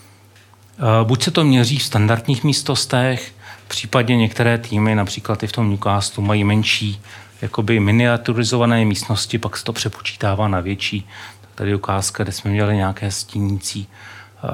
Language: Czech